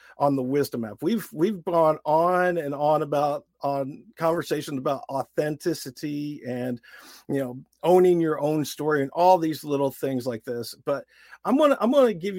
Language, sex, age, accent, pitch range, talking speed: English, male, 50-69, American, 140-190 Hz, 170 wpm